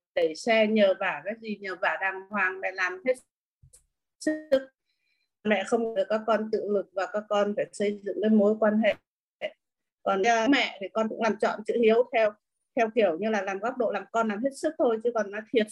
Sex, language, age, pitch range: female, Vietnamese, 20-39, 210-245 Hz